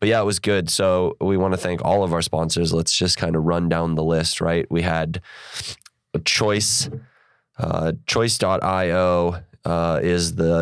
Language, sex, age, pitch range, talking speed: English, male, 20-39, 80-90 Hz, 180 wpm